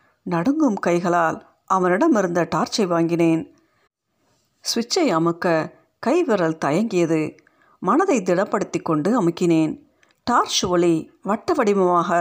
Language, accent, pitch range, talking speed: Tamil, native, 170-235 Hz, 75 wpm